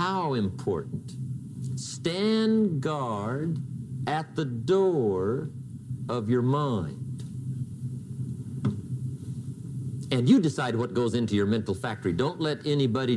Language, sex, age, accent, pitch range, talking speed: English, male, 50-69, American, 125-140 Hz, 100 wpm